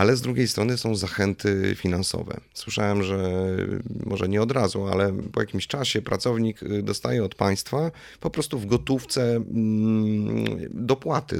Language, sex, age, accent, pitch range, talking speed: Polish, male, 30-49, native, 100-125 Hz, 135 wpm